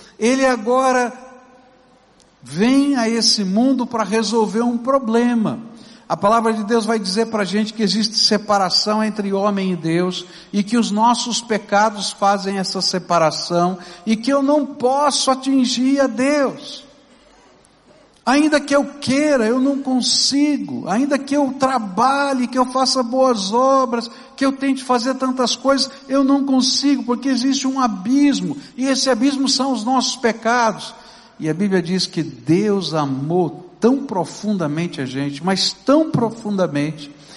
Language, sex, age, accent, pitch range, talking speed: Portuguese, male, 60-79, Brazilian, 160-250 Hz, 150 wpm